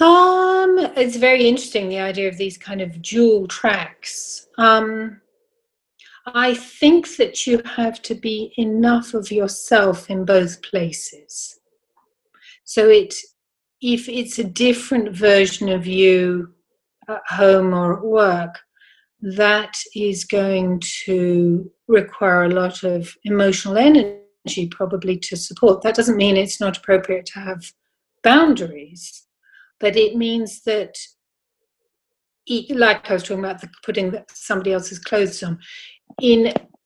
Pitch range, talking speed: 185-240 Hz, 125 wpm